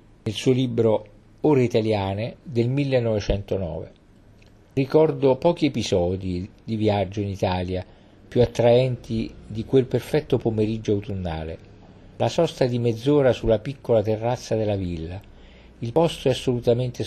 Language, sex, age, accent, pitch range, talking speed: Italian, male, 50-69, native, 100-125 Hz, 120 wpm